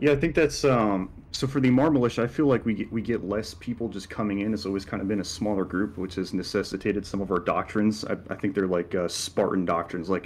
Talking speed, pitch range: 265 wpm, 95-105 Hz